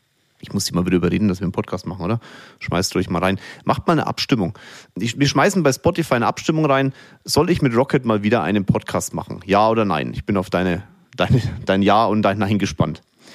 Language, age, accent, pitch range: German, 30-49, German, 105-135 Hz